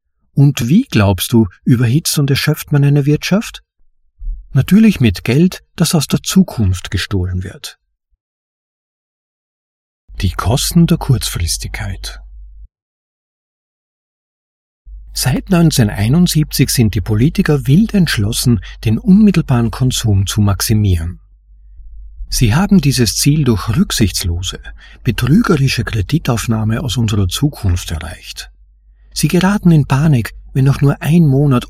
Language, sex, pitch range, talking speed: German, male, 100-150 Hz, 105 wpm